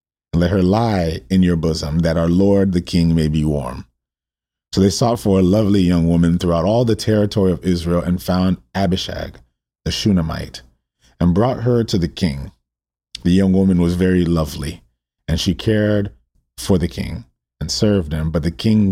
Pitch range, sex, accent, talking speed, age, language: 75-100 Hz, male, American, 180 wpm, 40-59, English